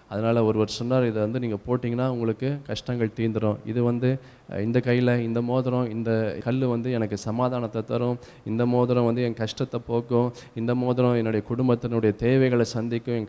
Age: 20-39